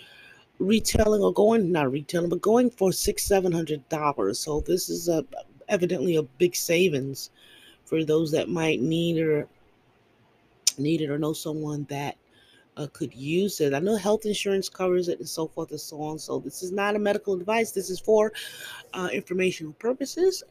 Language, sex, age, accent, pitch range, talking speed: English, female, 30-49, American, 155-205 Hz, 175 wpm